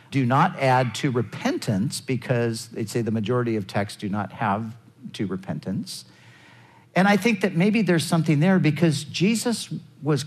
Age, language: 50-69, English